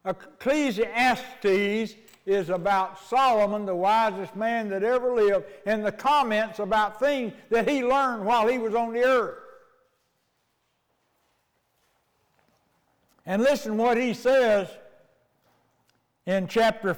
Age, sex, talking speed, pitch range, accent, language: 60-79, male, 110 wpm, 215-265 Hz, American, English